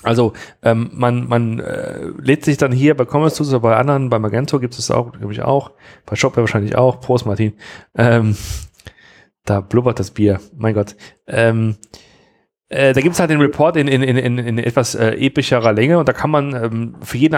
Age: 40-59